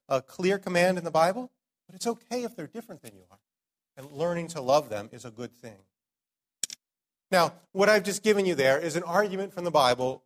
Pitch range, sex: 115-175 Hz, male